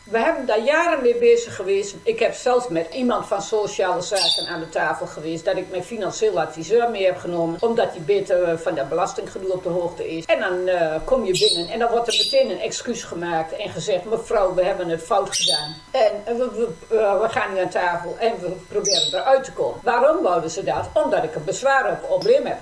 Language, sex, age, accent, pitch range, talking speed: Dutch, female, 50-69, Dutch, 185-275 Hz, 220 wpm